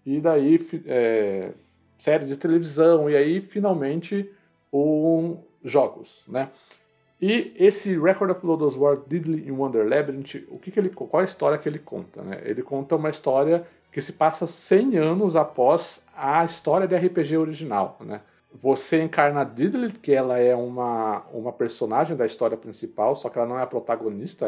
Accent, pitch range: Brazilian, 130-165 Hz